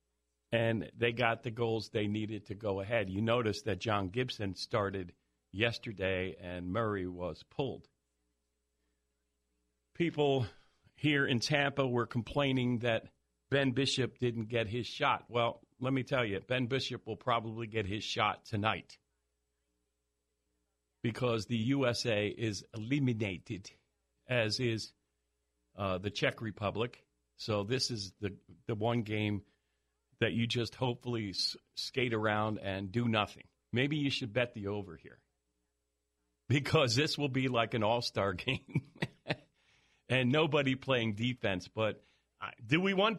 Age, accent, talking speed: 50-69, American, 135 wpm